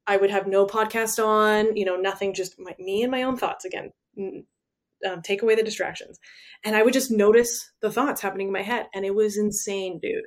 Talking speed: 215 wpm